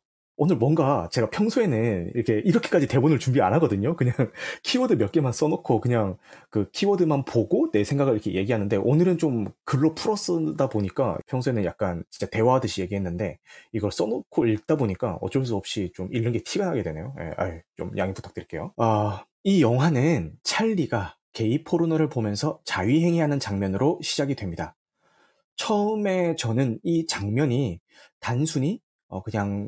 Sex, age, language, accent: male, 30-49, Korean, native